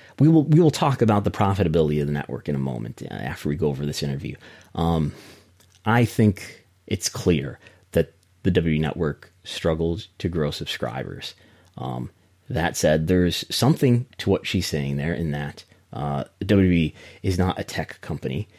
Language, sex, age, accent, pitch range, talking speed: English, male, 30-49, American, 80-105 Hz, 170 wpm